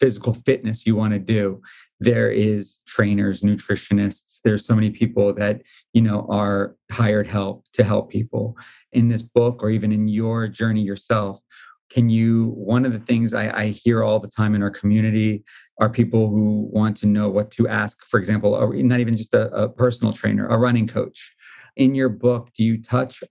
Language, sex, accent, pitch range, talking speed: English, male, American, 105-115 Hz, 195 wpm